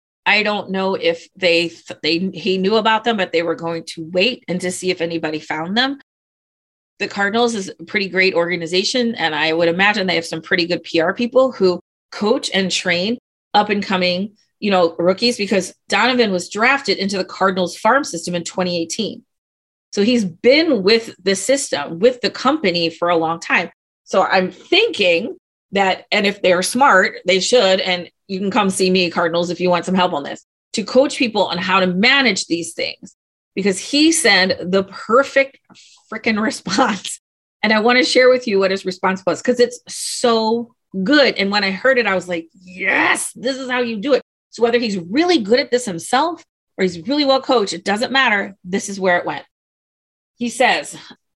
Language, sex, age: English, female, 30-49